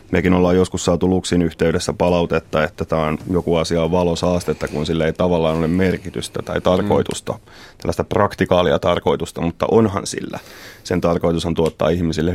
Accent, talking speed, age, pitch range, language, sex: native, 160 wpm, 30-49, 85-95 Hz, Finnish, male